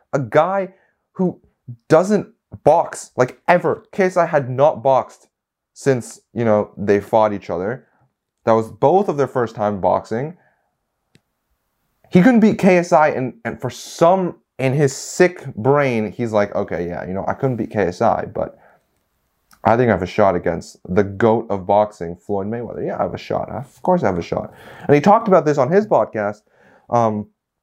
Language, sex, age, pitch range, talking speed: English, male, 20-39, 105-145 Hz, 180 wpm